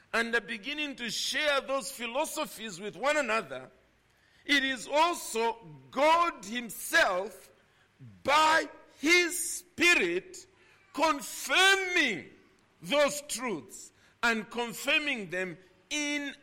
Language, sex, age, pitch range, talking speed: English, male, 50-69, 190-315 Hz, 90 wpm